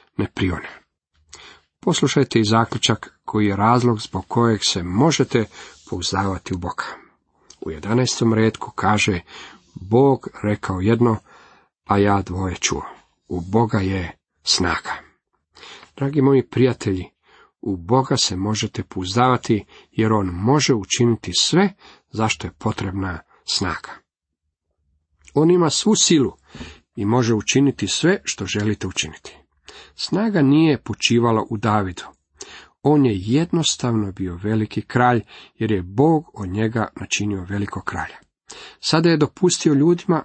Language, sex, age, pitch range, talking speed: Croatian, male, 40-59, 95-135 Hz, 120 wpm